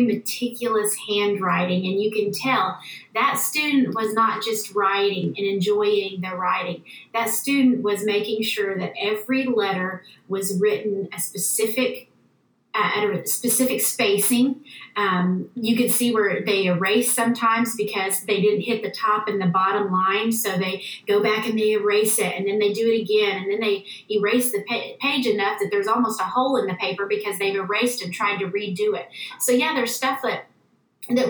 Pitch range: 200-235 Hz